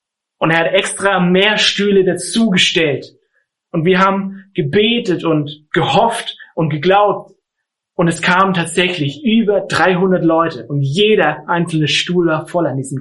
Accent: German